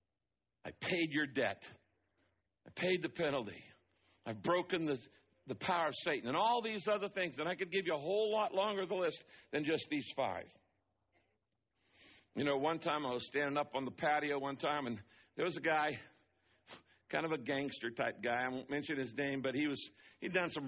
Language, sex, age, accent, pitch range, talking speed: English, male, 60-79, American, 115-160 Hz, 210 wpm